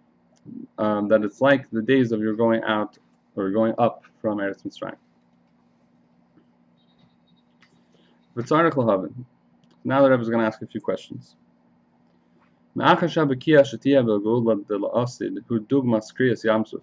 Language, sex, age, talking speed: English, male, 30-49, 95 wpm